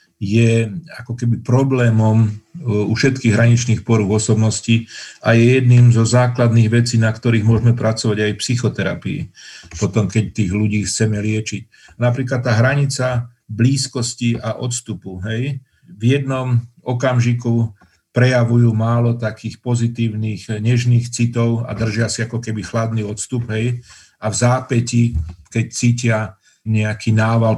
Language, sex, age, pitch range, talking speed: Slovak, male, 50-69, 110-120 Hz, 130 wpm